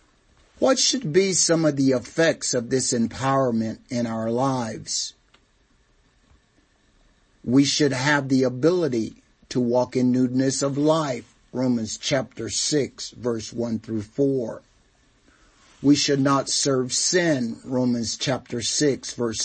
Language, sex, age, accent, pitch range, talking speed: English, male, 50-69, American, 115-140 Hz, 125 wpm